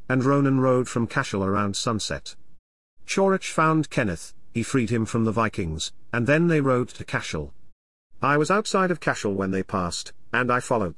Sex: male